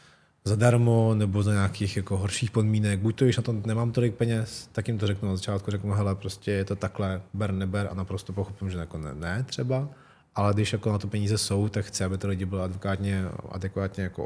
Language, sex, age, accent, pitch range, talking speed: Czech, male, 20-39, native, 95-110 Hz, 210 wpm